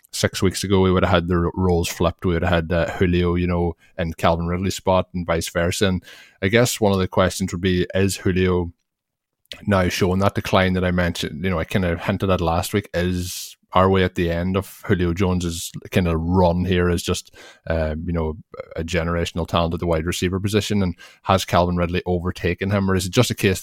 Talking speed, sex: 230 wpm, male